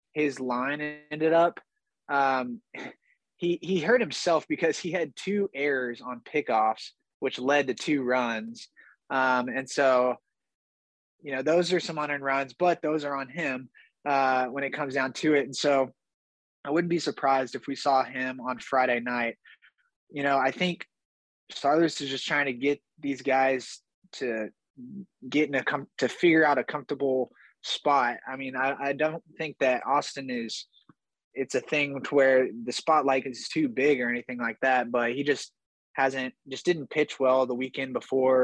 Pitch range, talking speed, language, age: 125-150 Hz, 180 wpm, English, 20-39